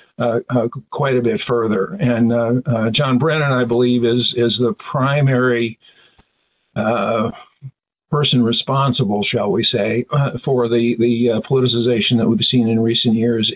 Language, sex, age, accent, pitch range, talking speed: English, male, 50-69, American, 115-130 Hz, 155 wpm